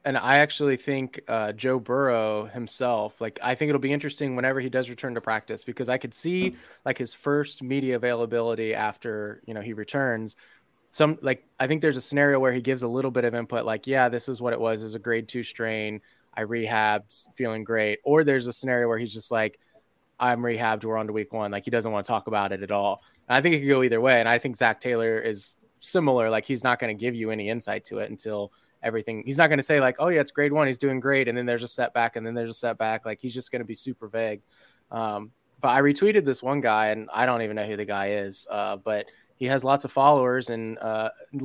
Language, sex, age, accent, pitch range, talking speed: English, male, 20-39, American, 110-130 Hz, 255 wpm